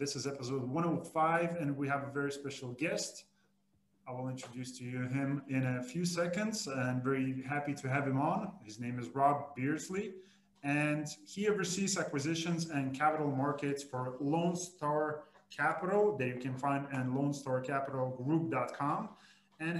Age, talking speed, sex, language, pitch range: 30-49, 155 wpm, male, English, 135-170 Hz